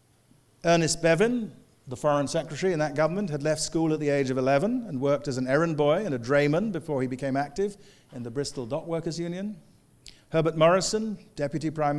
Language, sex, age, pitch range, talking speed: English, male, 50-69, 125-170 Hz, 195 wpm